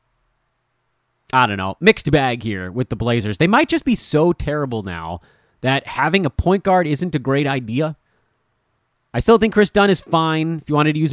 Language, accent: English, American